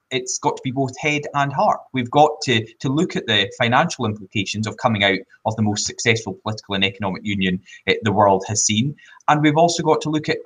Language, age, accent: English, 20-39, British